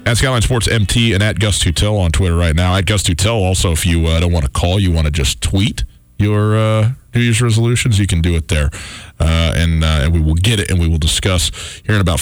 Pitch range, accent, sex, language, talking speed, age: 80-105 Hz, American, male, English, 260 wpm, 40-59